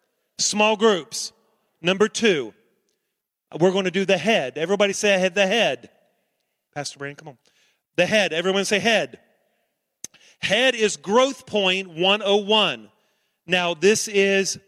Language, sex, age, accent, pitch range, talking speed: English, male, 40-59, American, 150-190 Hz, 130 wpm